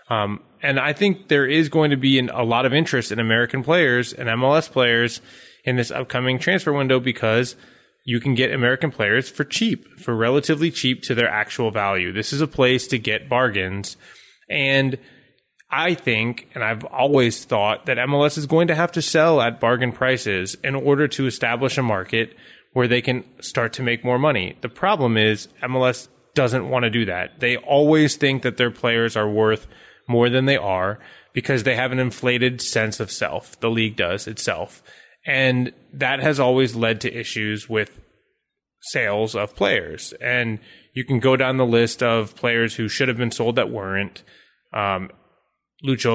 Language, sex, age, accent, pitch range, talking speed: English, male, 20-39, American, 110-135 Hz, 180 wpm